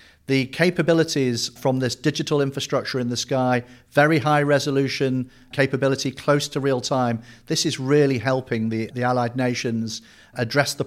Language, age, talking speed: English, 40-59, 150 wpm